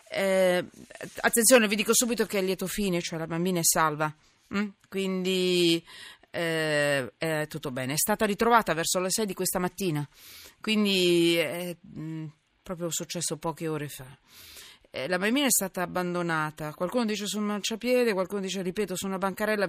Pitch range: 155-195 Hz